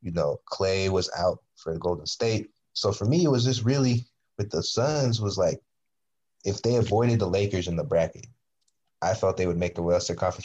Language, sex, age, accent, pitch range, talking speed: English, male, 20-39, American, 95-110 Hz, 210 wpm